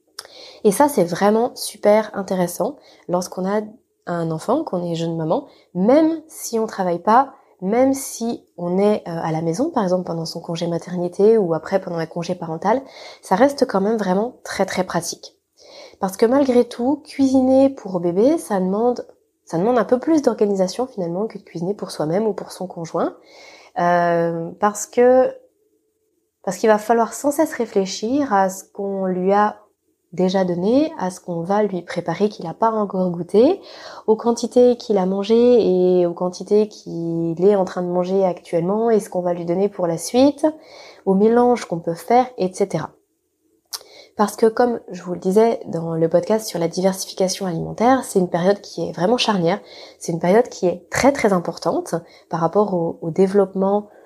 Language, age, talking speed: French, 20-39, 180 wpm